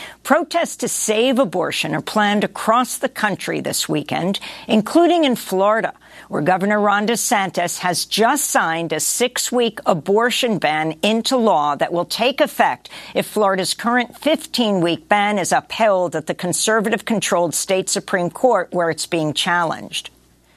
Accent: American